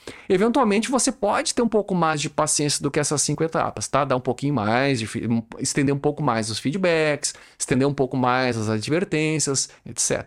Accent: Brazilian